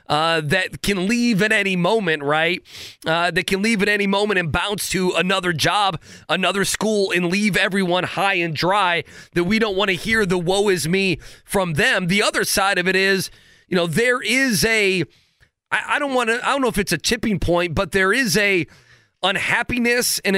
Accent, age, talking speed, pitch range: American, 30-49, 205 wpm, 170-210 Hz